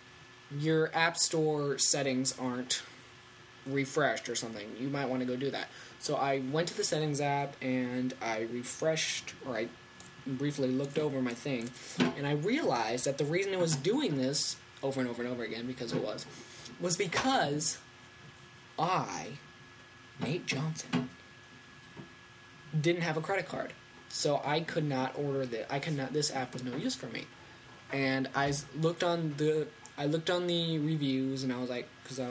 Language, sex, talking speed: English, male, 175 wpm